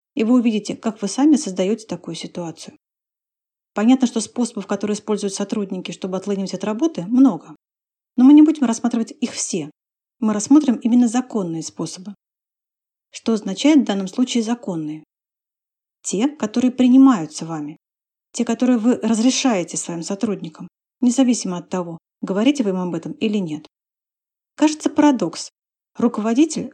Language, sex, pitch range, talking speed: Russian, female, 190-245 Hz, 135 wpm